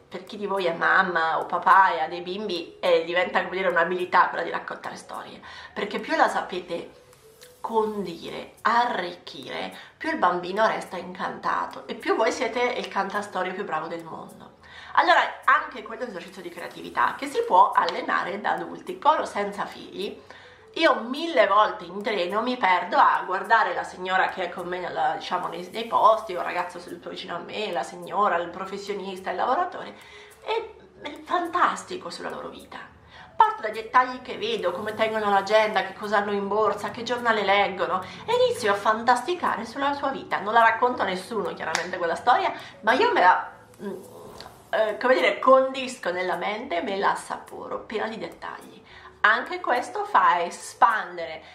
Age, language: 30-49, Italian